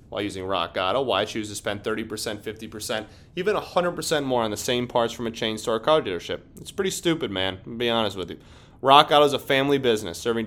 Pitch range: 105-140 Hz